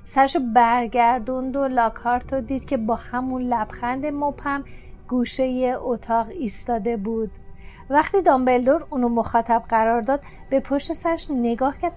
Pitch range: 245-310 Hz